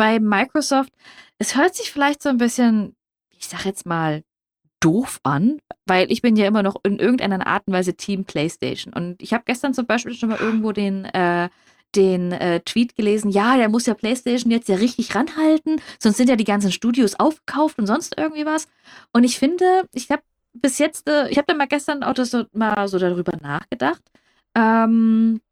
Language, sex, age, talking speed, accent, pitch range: German, female, 20-39, 200 wpm, German, 190-255 Hz